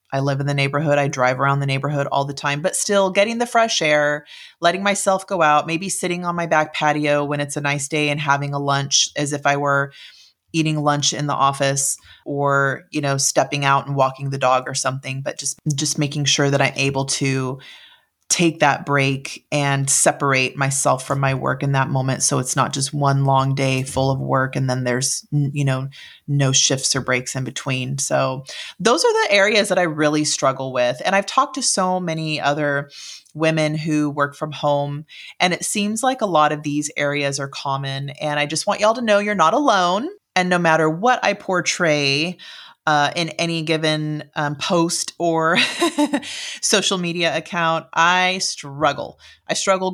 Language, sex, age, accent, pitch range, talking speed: English, female, 30-49, American, 140-160 Hz, 195 wpm